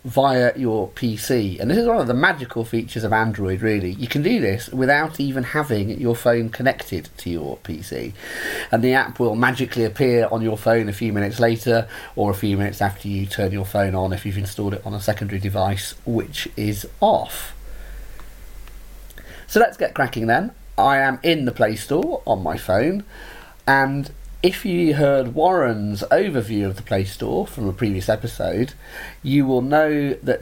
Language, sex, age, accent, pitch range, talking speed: English, male, 30-49, British, 100-125 Hz, 185 wpm